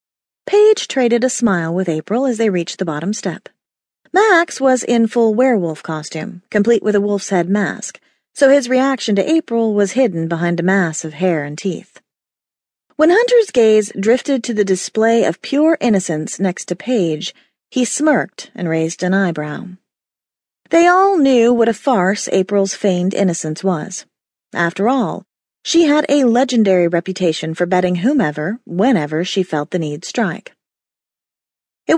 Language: English